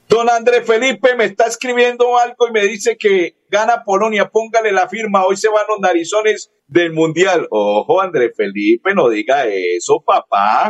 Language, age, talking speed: Spanish, 50-69, 170 wpm